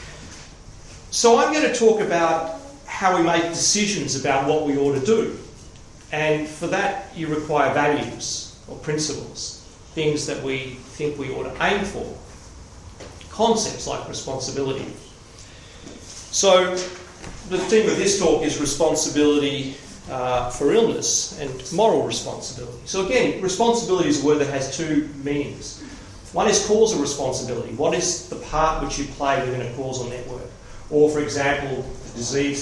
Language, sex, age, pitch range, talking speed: English, male, 40-59, 115-155 Hz, 145 wpm